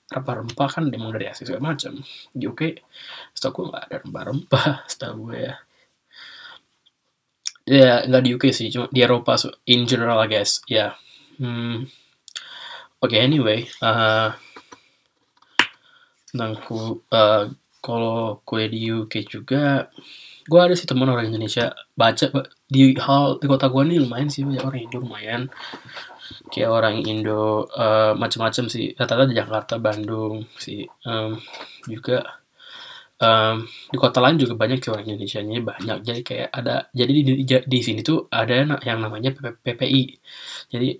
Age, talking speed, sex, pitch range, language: 20-39, 140 wpm, male, 115-135 Hz, Indonesian